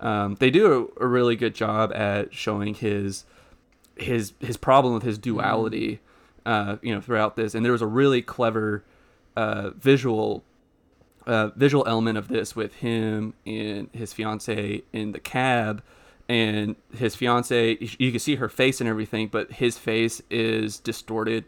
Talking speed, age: 165 wpm, 30-49